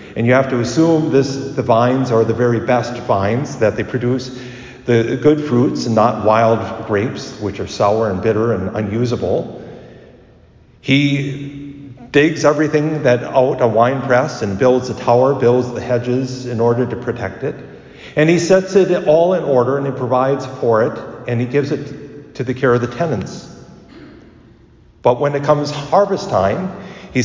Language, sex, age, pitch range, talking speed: English, male, 50-69, 115-145 Hz, 170 wpm